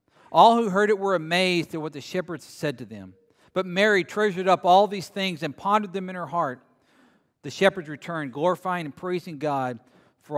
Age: 50-69